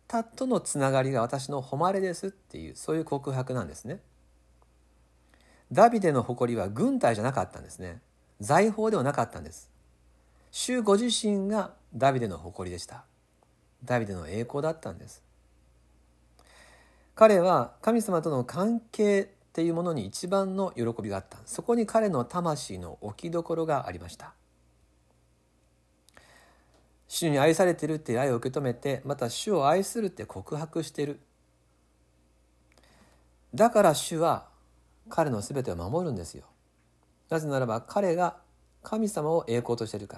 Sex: male